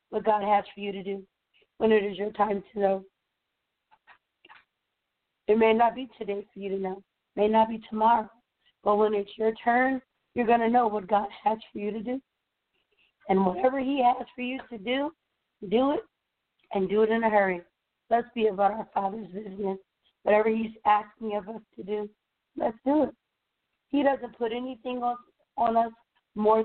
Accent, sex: American, female